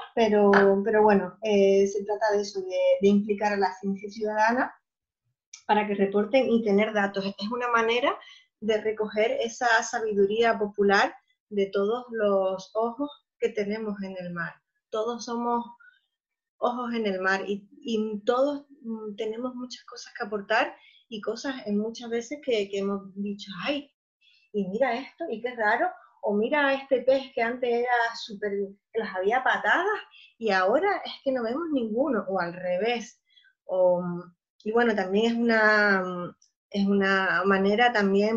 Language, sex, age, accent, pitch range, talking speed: Spanish, female, 20-39, American, 195-240 Hz, 155 wpm